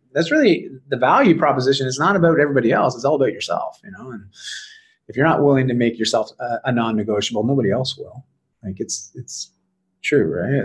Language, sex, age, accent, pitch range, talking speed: English, male, 30-49, American, 125-195 Hz, 195 wpm